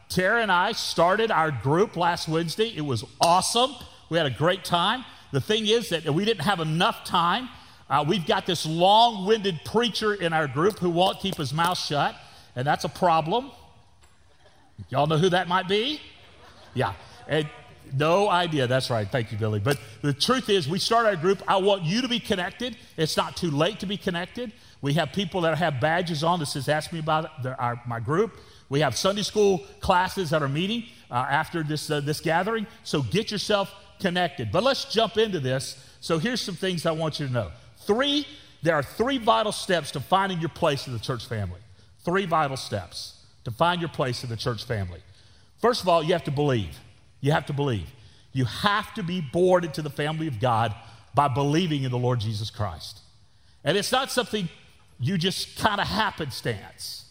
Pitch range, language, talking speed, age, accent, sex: 130-195 Hz, English, 200 wpm, 40-59, American, male